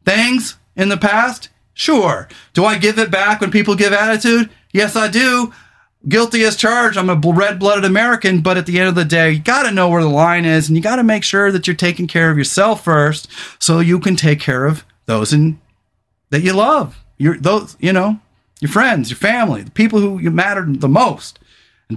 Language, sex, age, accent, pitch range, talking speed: English, male, 30-49, American, 155-210 Hz, 215 wpm